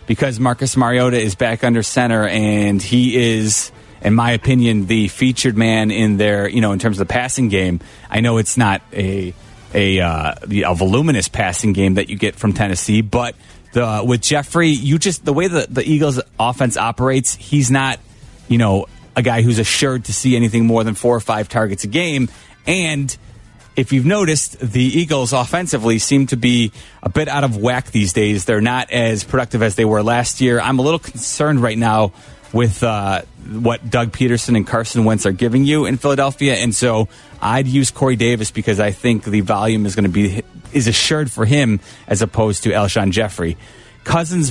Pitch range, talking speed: 110-130 Hz, 195 wpm